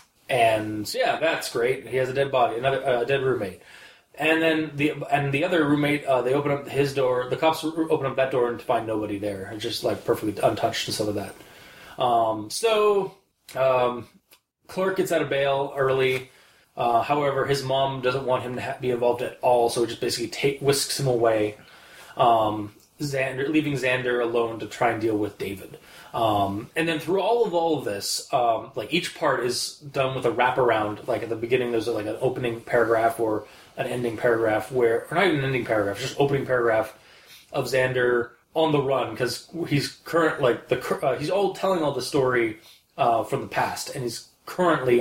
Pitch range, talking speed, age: 115-140 Hz, 205 wpm, 20-39